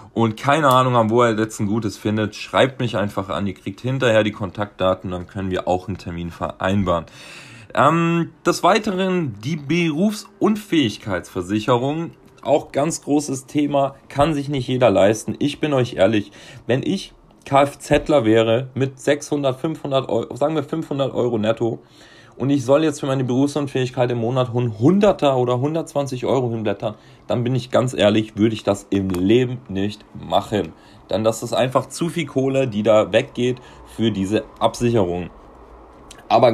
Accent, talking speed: German, 160 wpm